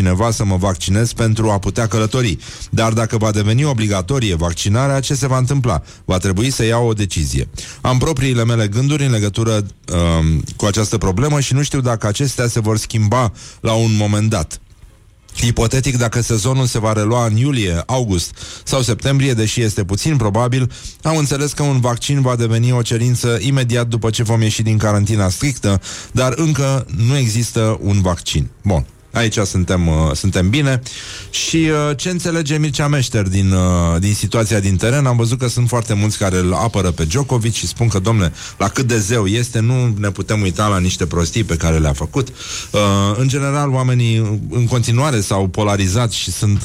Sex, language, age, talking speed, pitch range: male, Romanian, 30-49, 185 wpm, 100-125 Hz